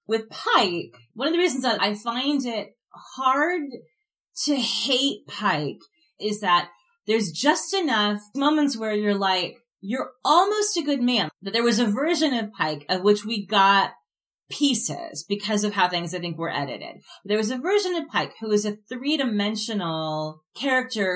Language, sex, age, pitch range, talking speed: English, female, 30-49, 170-235 Hz, 165 wpm